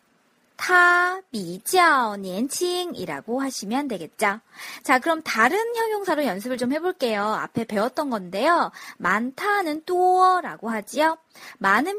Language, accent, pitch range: Korean, native, 225-350 Hz